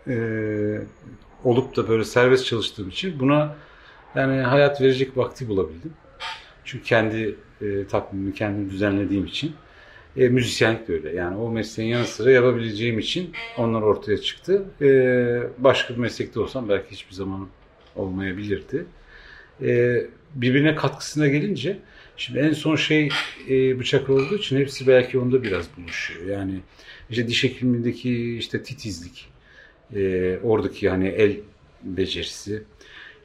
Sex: male